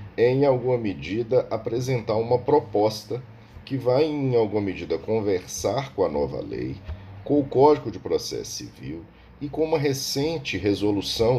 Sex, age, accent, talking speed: male, 40-59, Brazilian, 150 wpm